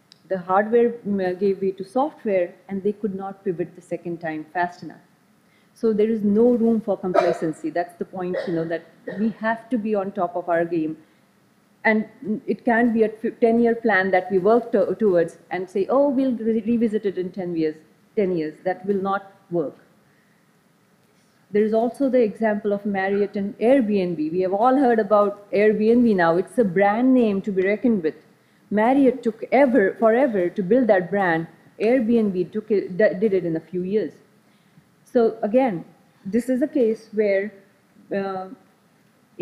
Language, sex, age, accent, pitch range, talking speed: English, female, 40-59, Indian, 190-240 Hz, 170 wpm